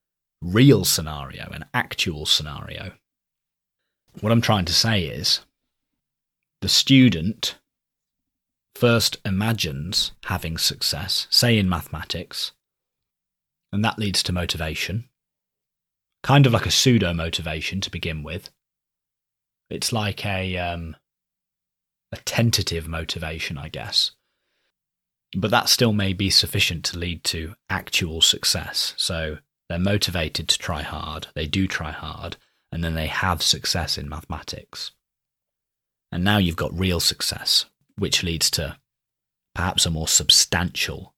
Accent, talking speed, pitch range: British, 120 wpm, 80-100 Hz